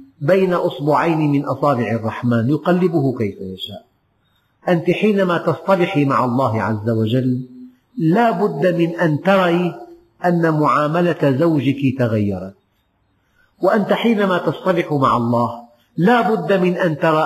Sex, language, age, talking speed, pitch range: male, Arabic, 50-69, 120 wpm, 130-190 Hz